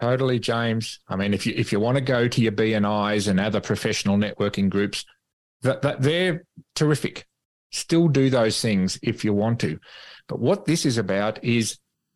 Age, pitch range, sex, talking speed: 40-59, 105-140 Hz, male, 190 wpm